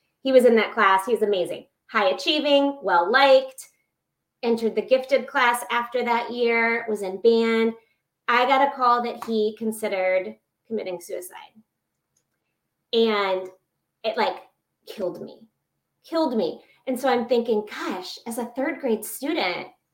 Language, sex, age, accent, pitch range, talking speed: English, female, 30-49, American, 210-275 Hz, 140 wpm